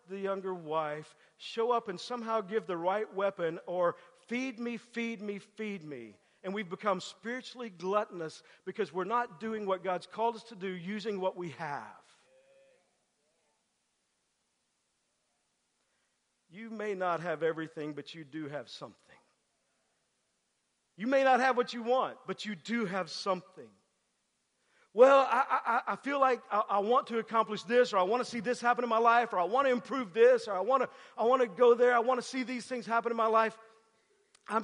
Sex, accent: male, American